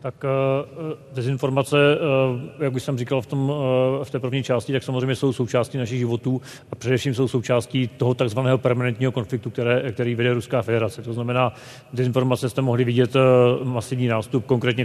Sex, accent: male, native